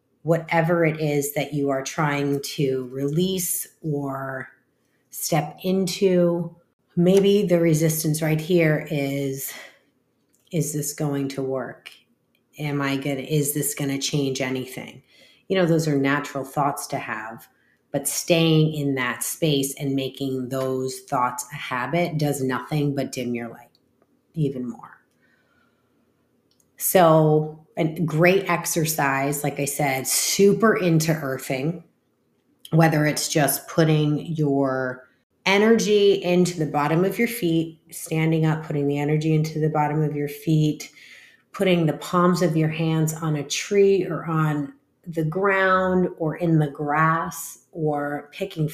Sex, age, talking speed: female, 30-49, 140 wpm